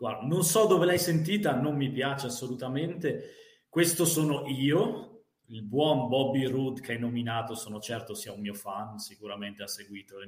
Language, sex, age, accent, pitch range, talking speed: Italian, male, 20-39, native, 115-150 Hz, 175 wpm